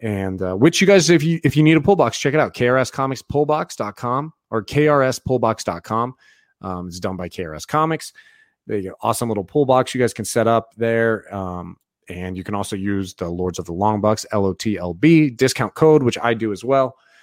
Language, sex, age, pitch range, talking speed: English, male, 30-49, 100-135 Hz, 225 wpm